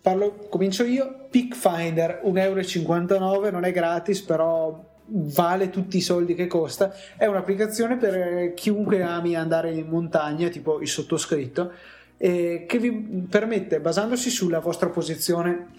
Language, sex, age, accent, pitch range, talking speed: Italian, male, 30-49, native, 165-200 Hz, 135 wpm